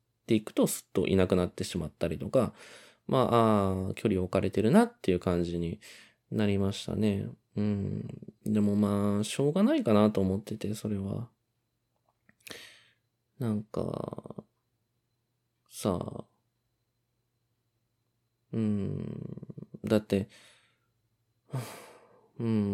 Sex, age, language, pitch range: male, 20-39, Japanese, 100-120 Hz